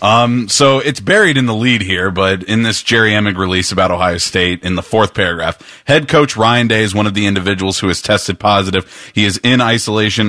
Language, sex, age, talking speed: English, male, 30-49, 220 wpm